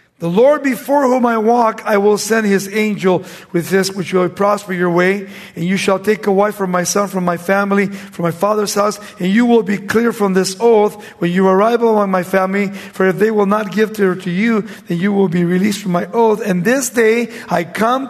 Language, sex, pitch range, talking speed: English, male, 185-230 Hz, 230 wpm